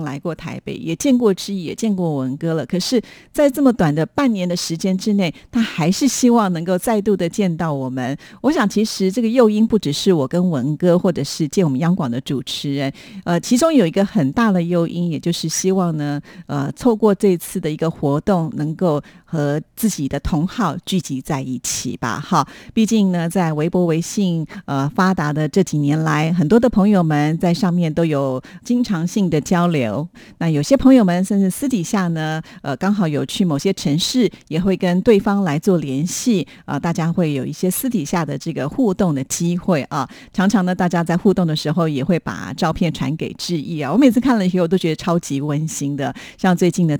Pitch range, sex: 155-200 Hz, female